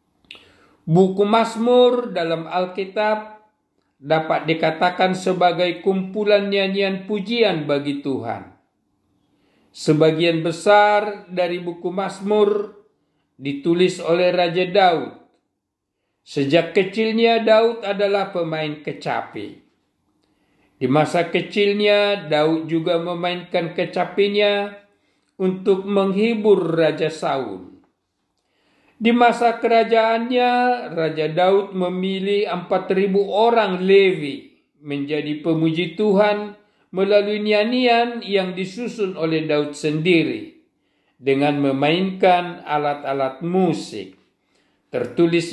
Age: 50-69